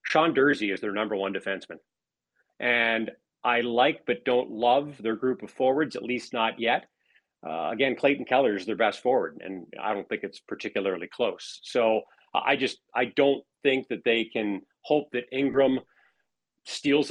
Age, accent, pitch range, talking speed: 40-59, American, 115-140 Hz, 170 wpm